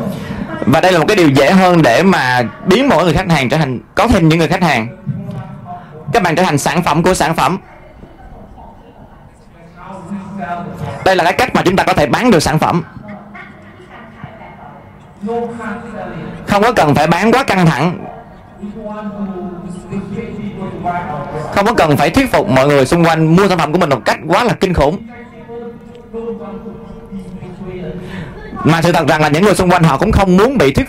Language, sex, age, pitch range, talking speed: Vietnamese, male, 20-39, 160-205 Hz, 175 wpm